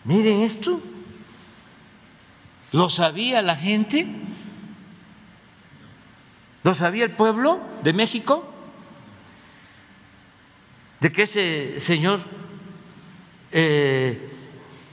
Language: Spanish